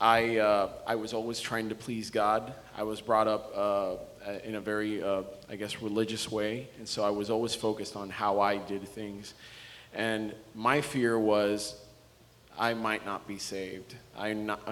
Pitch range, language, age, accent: 100-115 Hz, English, 30-49, American